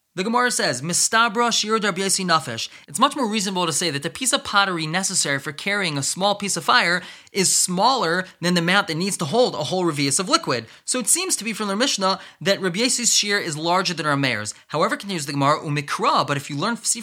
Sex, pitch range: male, 155-215 Hz